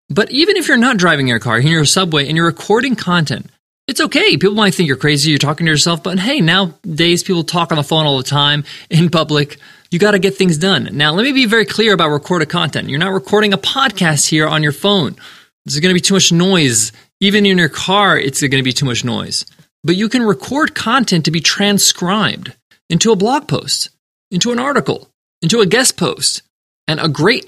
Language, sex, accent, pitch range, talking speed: English, male, American, 145-200 Hz, 225 wpm